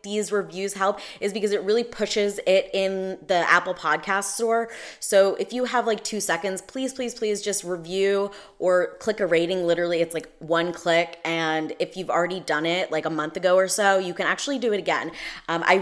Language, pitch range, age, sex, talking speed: English, 175-215 Hz, 20-39, female, 205 wpm